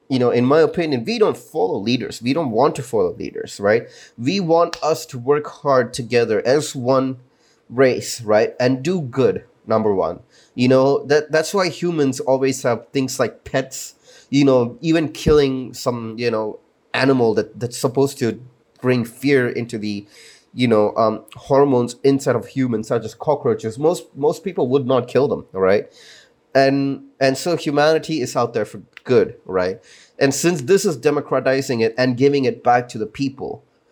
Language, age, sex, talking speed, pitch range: English, 30-49, male, 175 wpm, 120-145 Hz